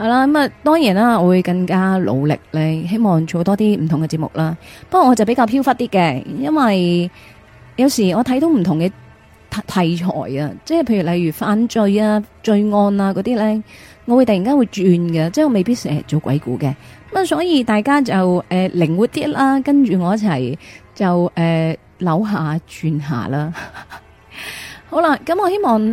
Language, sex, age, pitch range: Chinese, female, 30-49, 165-240 Hz